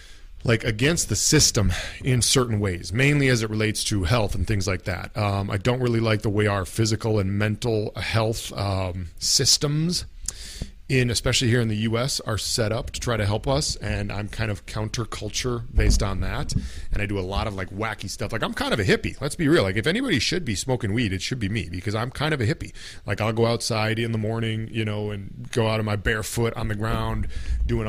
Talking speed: 230 wpm